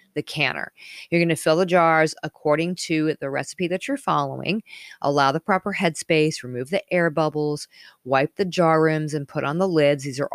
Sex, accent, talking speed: female, American, 195 wpm